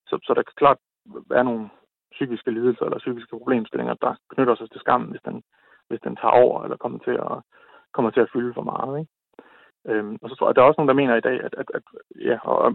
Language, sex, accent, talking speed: Danish, male, native, 255 wpm